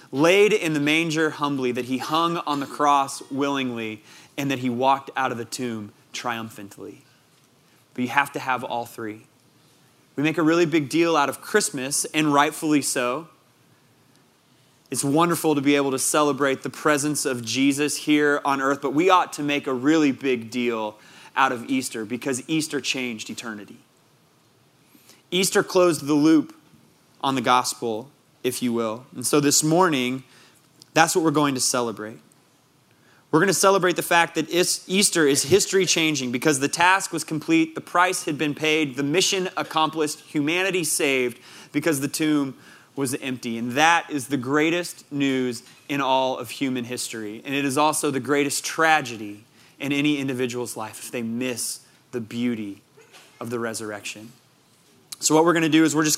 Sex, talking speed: male, 170 wpm